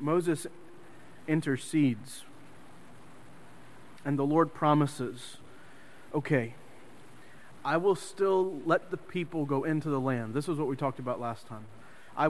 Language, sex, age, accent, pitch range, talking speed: English, male, 30-49, American, 130-165 Hz, 125 wpm